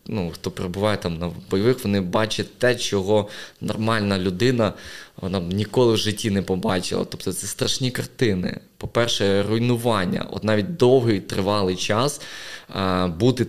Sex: male